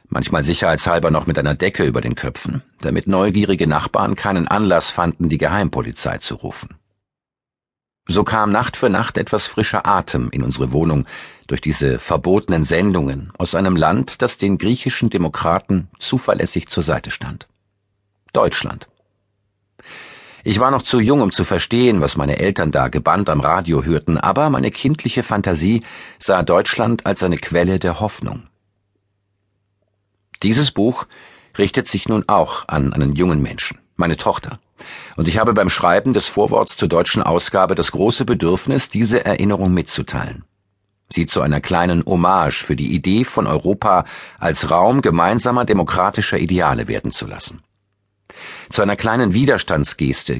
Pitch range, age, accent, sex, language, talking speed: 85-100 Hz, 50-69, German, male, German, 145 wpm